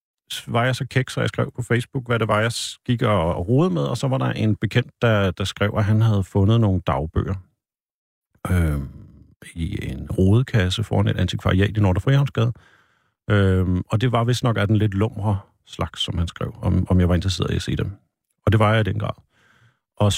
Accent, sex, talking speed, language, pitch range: native, male, 215 wpm, Danish, 95-120 Hz